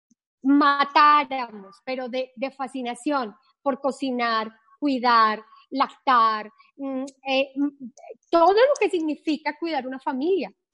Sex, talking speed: female, 95 wpm